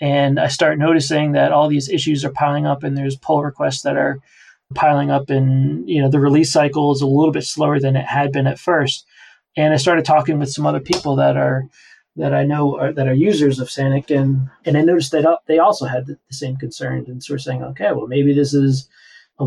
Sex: male